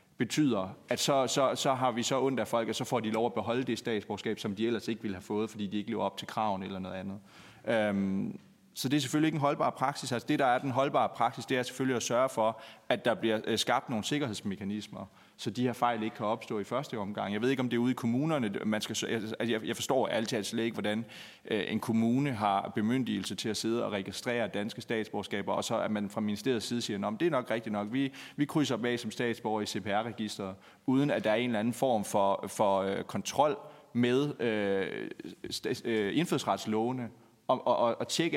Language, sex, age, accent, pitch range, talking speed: Danish, male, 30-49, native, 105-130 Hz, 235 wpm